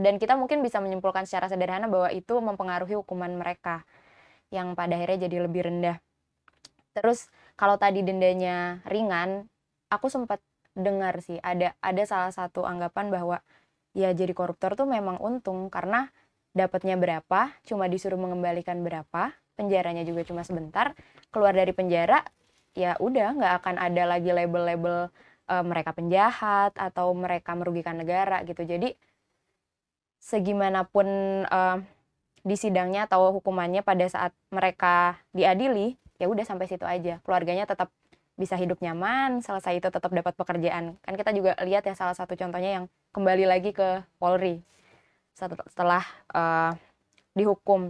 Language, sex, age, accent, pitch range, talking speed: Indonesian, female, 20-39, native, 175-200 Hz, 140 wpm